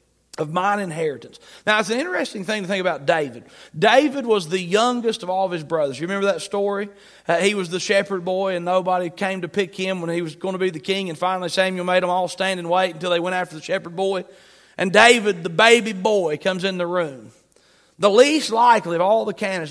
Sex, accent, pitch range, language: male, American, 180-230 Hz, English